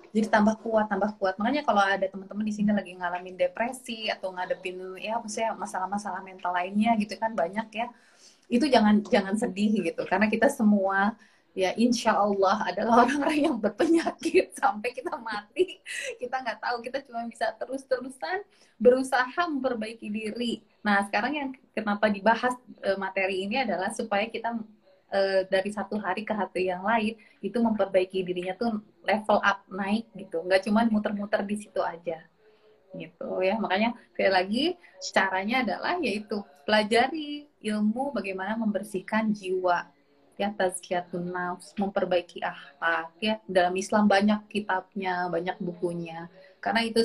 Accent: native